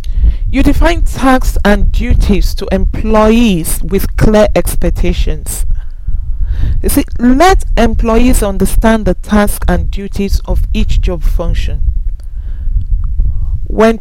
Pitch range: 170-220 Hz